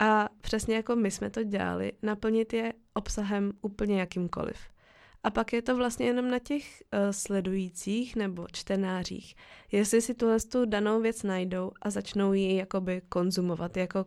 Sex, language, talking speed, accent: female, Czech, 160 wpm, native